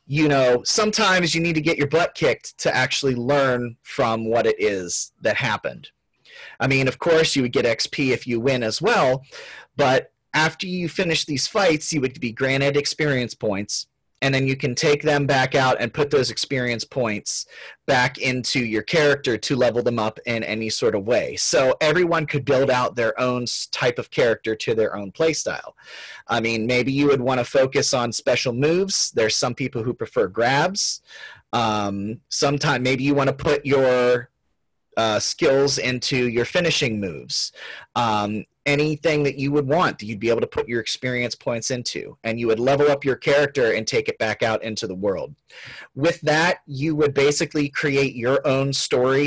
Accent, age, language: American, 30-49, English